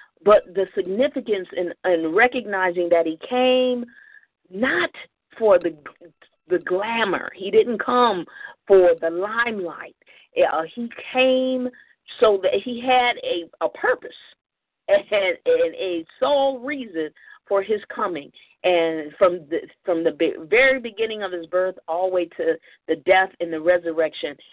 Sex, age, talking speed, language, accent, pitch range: female, 40-59, 140 wpm, English, American, 175-255 Hz